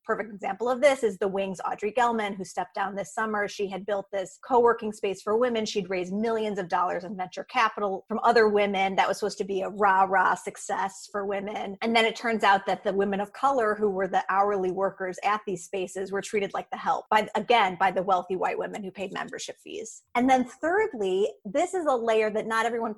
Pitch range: 190-215 Hz